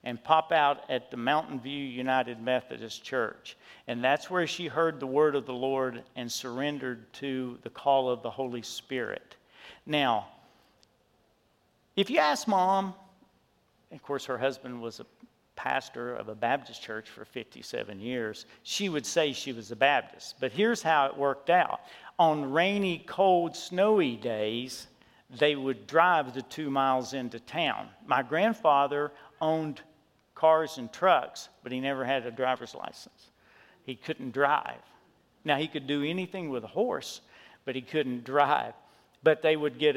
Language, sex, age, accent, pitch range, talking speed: English, male, 50-69, American, 130-160 Hz, 160 wpm